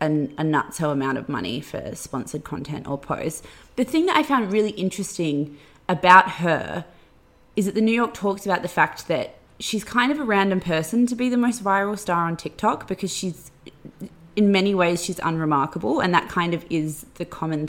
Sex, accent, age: female, Australian, 20-39